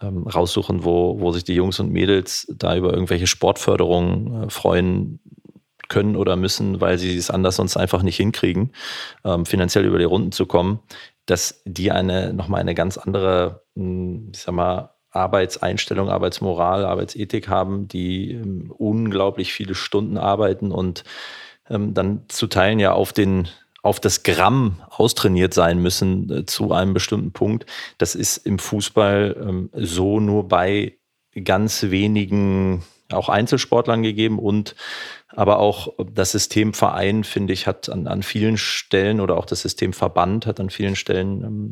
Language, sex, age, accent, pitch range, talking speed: German, male, 30-49, German, 90-105 Hz, 145 wpm